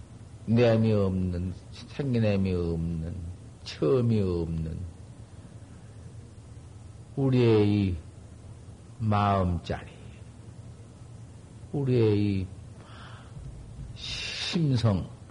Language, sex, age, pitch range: Korean, male, 50-69, 105-125 Hz